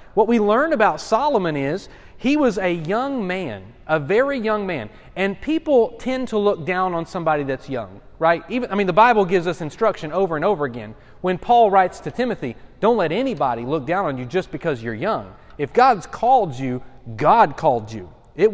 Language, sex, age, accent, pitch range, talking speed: English, male, 30-49, American, 155-215 Hz, 200 wpm